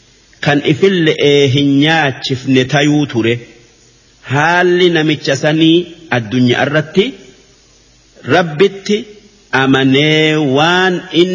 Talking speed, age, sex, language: 70 wpm, 50-69, male, English